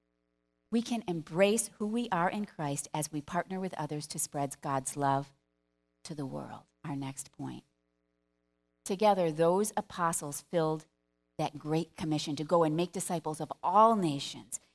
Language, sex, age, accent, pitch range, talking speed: English, female, 40-59, American, 140-205 Hz, 155 wpm